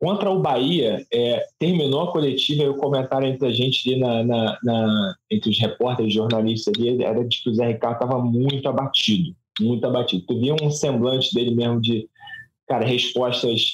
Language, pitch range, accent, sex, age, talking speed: Portuguese, 120-140 Hz, Brazilian, male, 20-39, 185 wpm